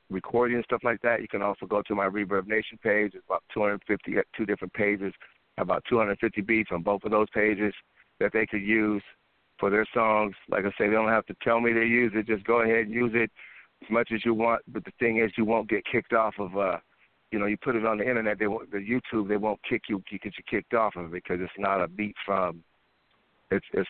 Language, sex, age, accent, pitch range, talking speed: English, male, 60-79, American, 100-115 Hz, 250 wpm